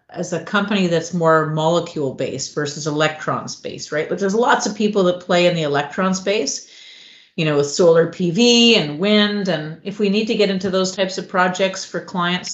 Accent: American